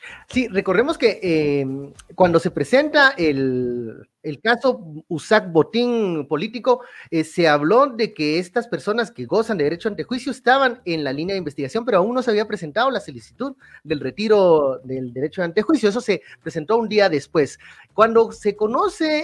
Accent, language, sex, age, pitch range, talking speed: Mexican, Spanish, male, 30-49, 150-225 Hz, 170 wpm